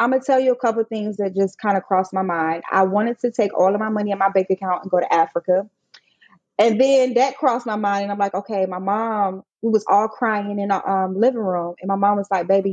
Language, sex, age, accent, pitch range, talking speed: English, female, 20-39, American, 195-240 Hz, 280 wpm